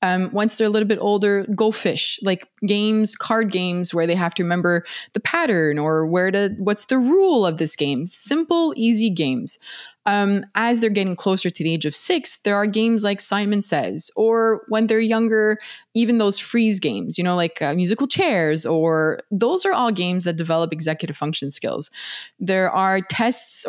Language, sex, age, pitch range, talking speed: English, female, 20-39, 175-225 Hz, 190 wpm